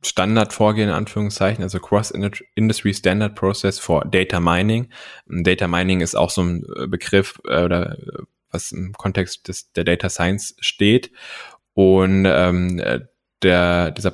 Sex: male